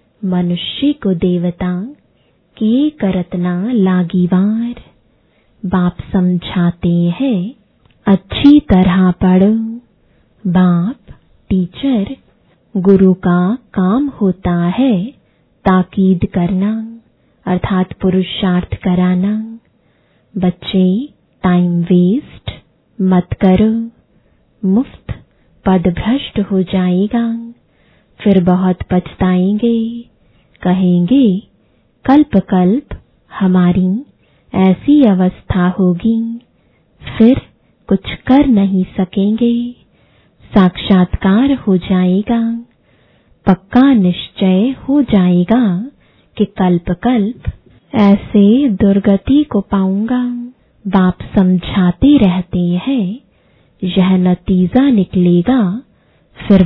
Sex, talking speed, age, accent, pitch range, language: female, 75 wpm, 20-39, Indian, 185-230 Hz, English